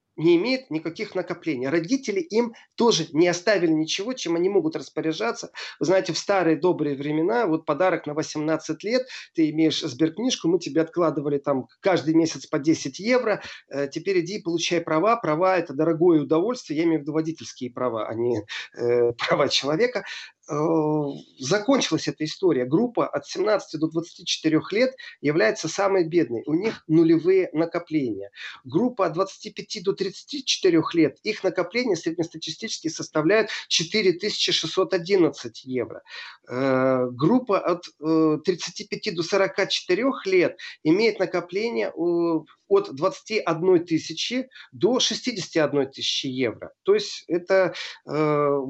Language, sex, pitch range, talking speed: Russian, male, 155-210 Hz, 125 wpm